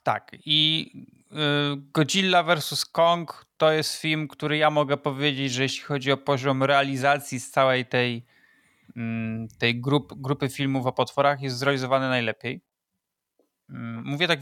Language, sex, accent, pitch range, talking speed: Polish, male, native, 130-155 Hz, 135 wpm